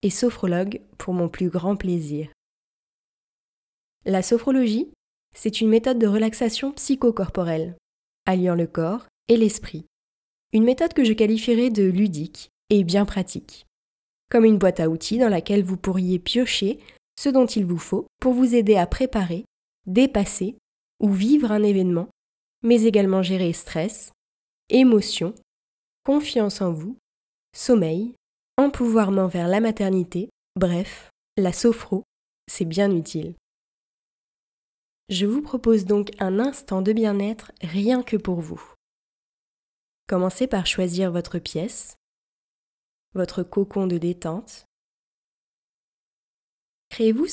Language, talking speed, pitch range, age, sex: French, 120 wpm, 185-230 Hz, 20-39, female